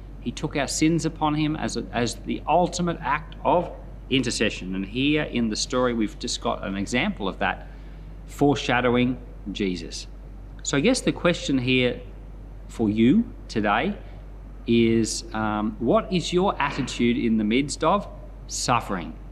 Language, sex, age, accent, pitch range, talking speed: English, male, 40-59, Australian, 105-140 Hz, 150 wpm